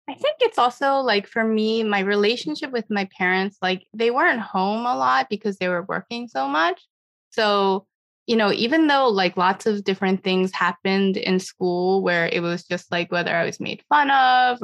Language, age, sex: English, 20-39, female